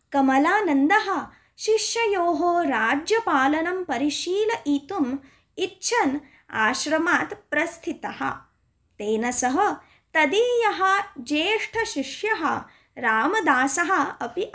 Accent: native